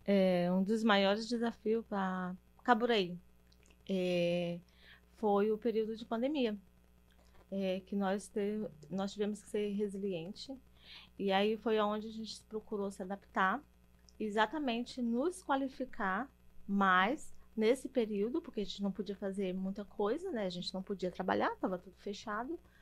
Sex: female